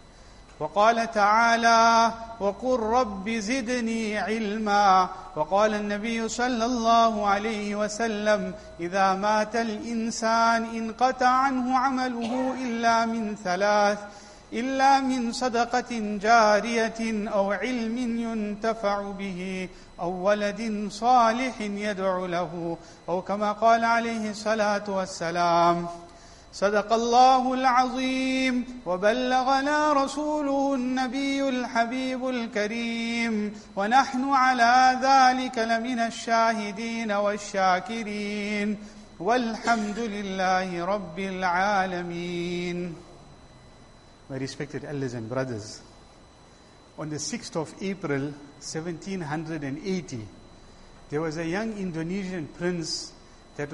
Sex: male